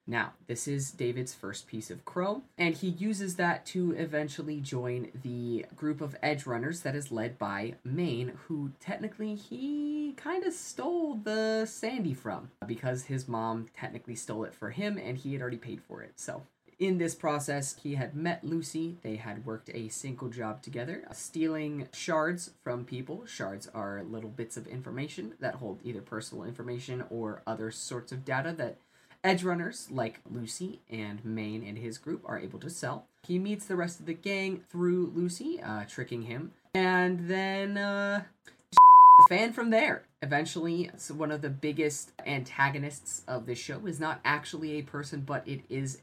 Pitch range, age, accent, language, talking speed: 120-175 Hz, 20-39, American, English, 175 wpm